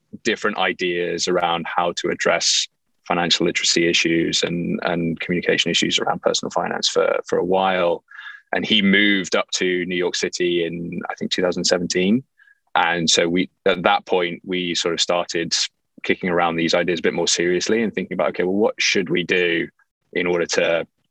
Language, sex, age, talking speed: English, male, 20-39, 175 wpm